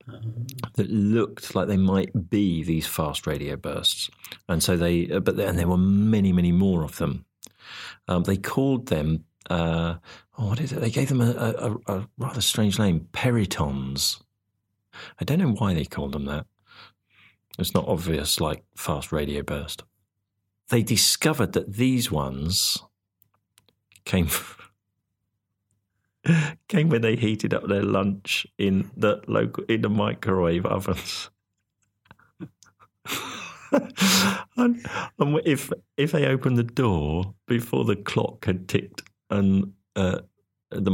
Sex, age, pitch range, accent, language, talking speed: male, 40-59, 95-115 Hz, British, English, 140 wpm